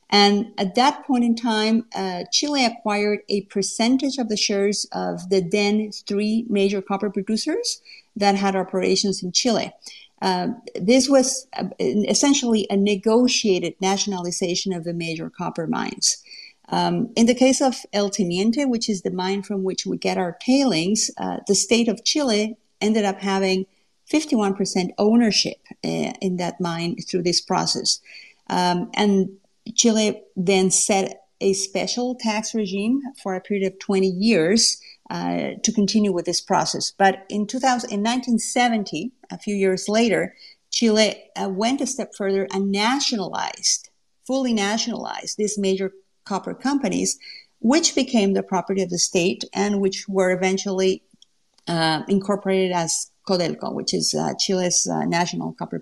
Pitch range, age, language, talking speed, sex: 190-230 Hz, 50-69, English, 150 wpm, female